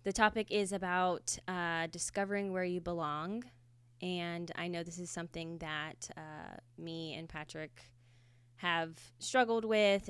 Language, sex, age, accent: English, female, 20-39, American